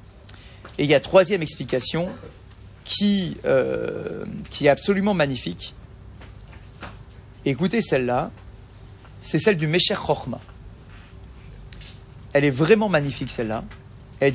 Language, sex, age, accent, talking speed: French, male, 40-59, French, 105 wpm